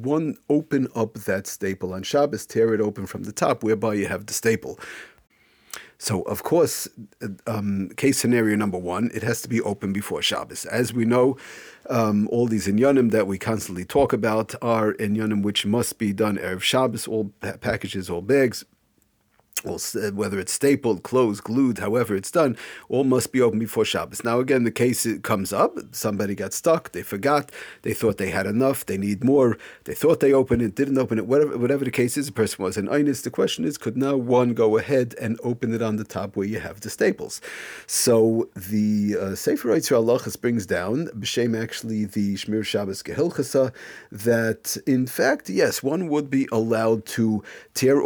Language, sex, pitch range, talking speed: English, male, 105-125 Hz, 190 wpm